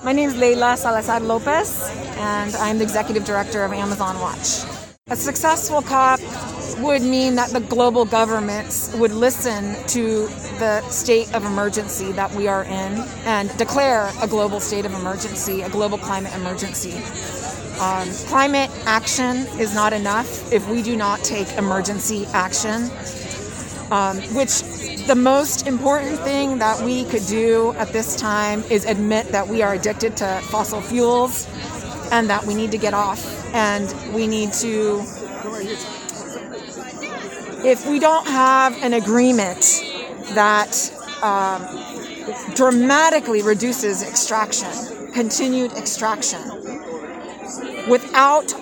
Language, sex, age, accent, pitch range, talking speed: English, female, 30-49, American, 205-250 Hz, 130 wpm